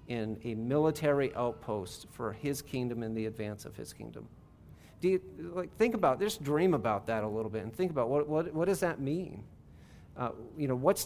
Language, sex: English, male